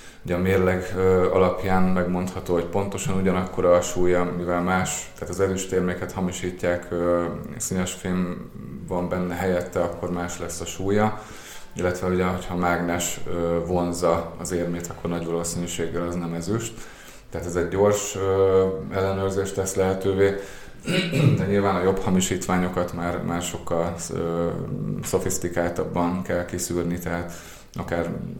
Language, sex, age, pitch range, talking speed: Hungarian, male, 20-39, 85-95 Hz, 130 wpm